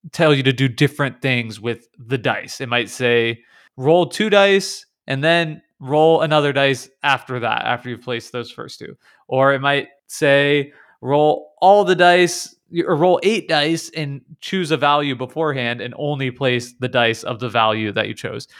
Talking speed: 180 wpm